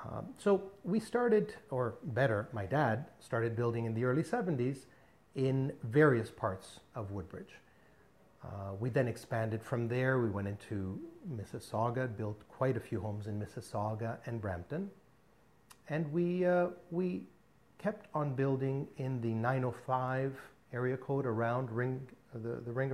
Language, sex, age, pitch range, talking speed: English, male, 40-59, 115-140 Hz, 145 wpm